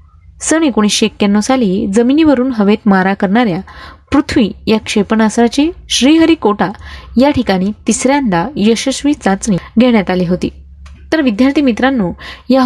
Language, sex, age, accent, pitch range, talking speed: Marathi, female, 20-39, native, 195-260 Hz, 115 wpm